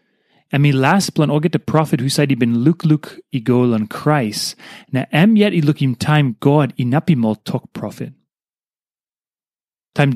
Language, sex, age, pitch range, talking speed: English, male, 30-49, 135-185 Hz, 195 wpm